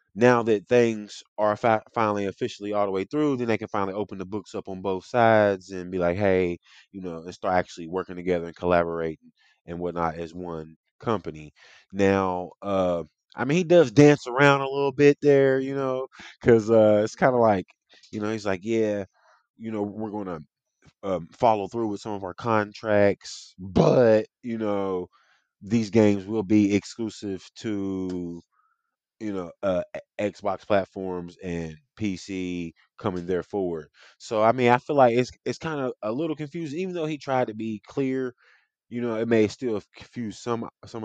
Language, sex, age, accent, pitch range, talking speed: English, male, 20-39, American, 90-115 Hz, 175 wpm